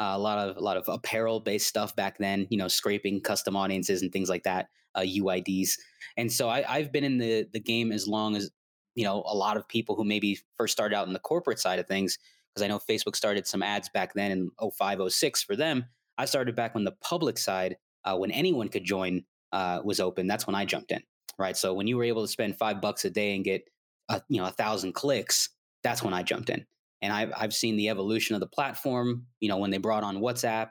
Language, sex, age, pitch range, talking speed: English, male, 20-39, 100-120 Hz, 245 wpm